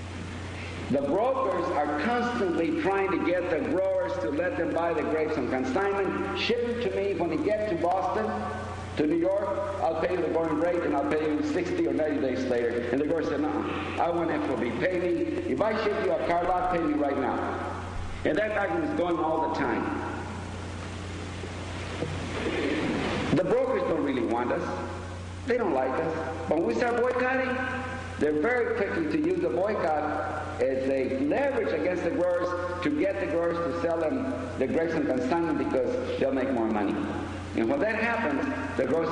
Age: 60-79